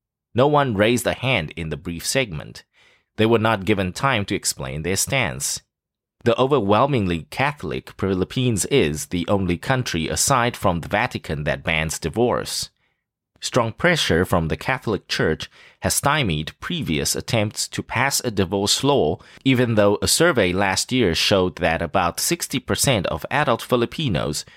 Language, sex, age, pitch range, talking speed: English, male, 30-49, 85-120 Hz, 150 wpm